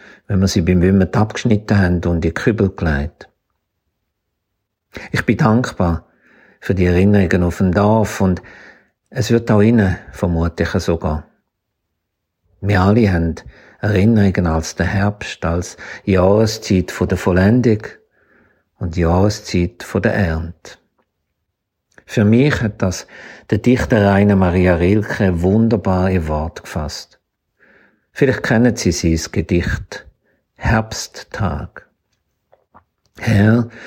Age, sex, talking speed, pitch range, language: 50-69, male, 110 wpm, 85-110 Hz, German